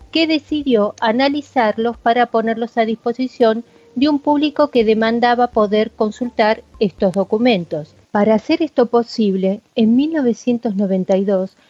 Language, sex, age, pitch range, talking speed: Spanish, female, 40-59, 205-250 Hz, 115 wpm